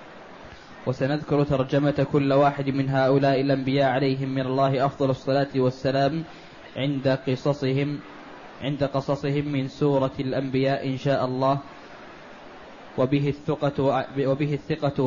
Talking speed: 110 wpm